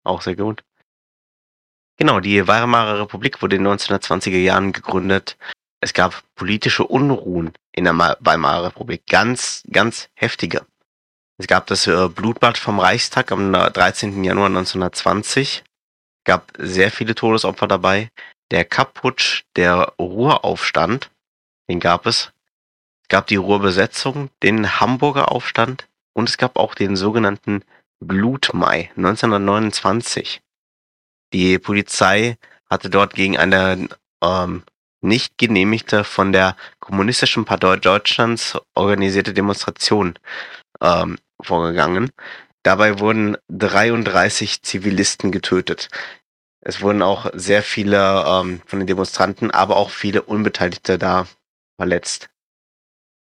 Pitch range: 95-110 Hz